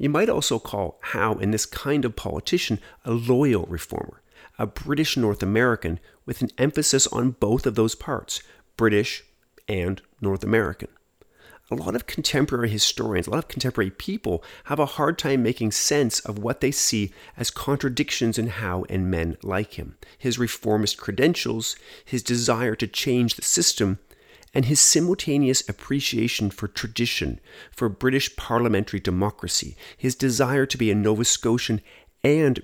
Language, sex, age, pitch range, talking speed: English, male, 40-59, 100-130 Hz, 155 wpm